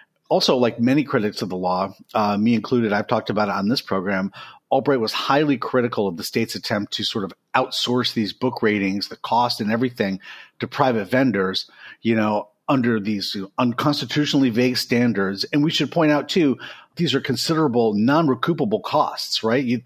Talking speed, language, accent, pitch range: 175 wpm, English, American, 115-150 Hz